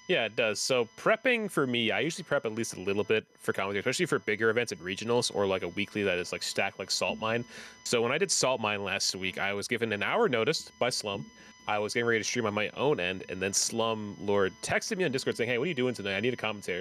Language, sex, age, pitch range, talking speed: English, male, 30-49, 100-125 Hz, 280 wpm